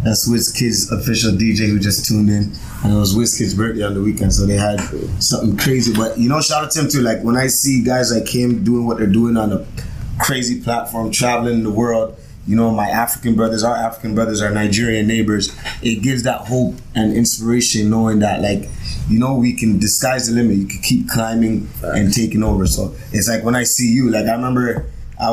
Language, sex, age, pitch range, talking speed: English, male, 20-39, 110-130 Hz, 220 wpm